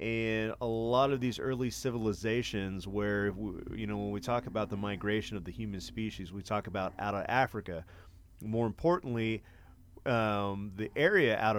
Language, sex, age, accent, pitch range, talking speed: English, male, 30-49, American, 100-120 Hz, 165 wpm